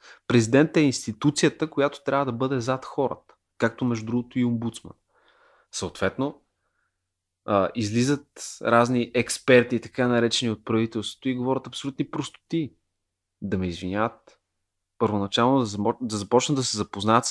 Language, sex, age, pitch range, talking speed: Bulgarian, male, 30-49, 110-140 Hz, 120 wpm